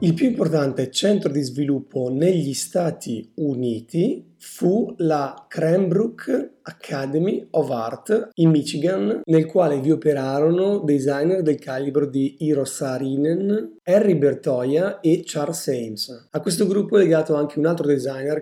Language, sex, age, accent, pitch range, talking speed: Italian, male, 30-49, native, 145-180 Hz, 135 wpm